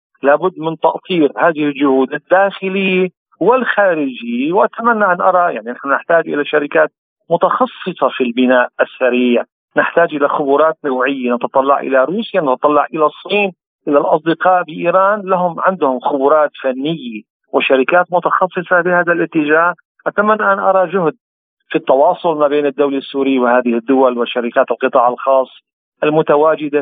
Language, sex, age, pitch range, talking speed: Arabic, male, 40-59, 140-190 Hz, 125 wpm